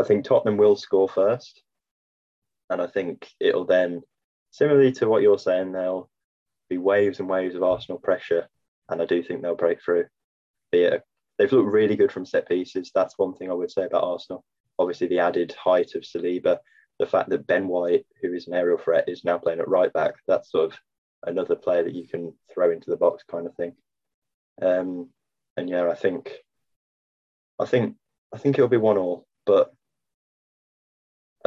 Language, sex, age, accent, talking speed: English, male, 20-39, British, 190 wpm